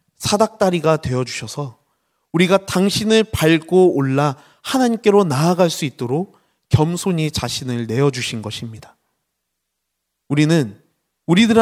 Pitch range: 125-185 Hz